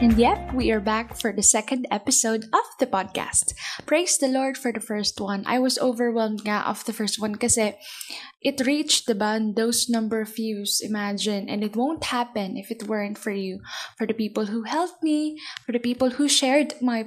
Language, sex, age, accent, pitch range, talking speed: Filipino, female, 10-29, native, 220-265 Hz, 205 wpm